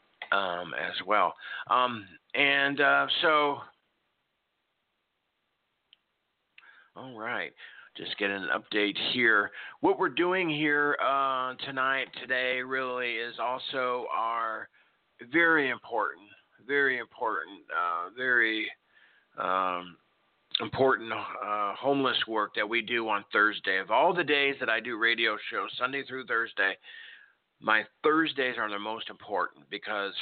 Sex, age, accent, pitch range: male, 50-69, American, 110-135 Hz